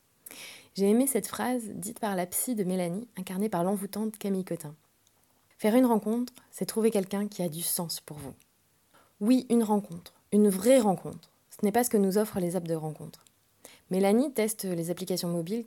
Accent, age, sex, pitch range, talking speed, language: French, 20-39, female, 170-215 Hz, 195 wpm, French